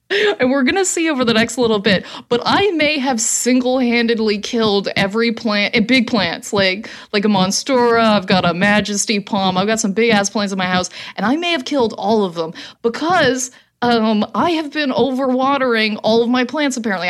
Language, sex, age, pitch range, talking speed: English, female, 30-49, 195-255 Hz, 195 wpm